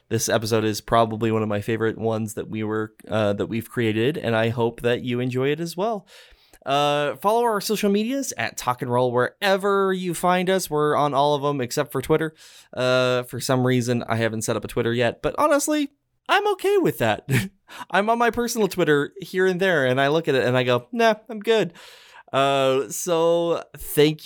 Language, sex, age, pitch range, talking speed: English, male, 20-39, 115-160 Hz, 215 wpm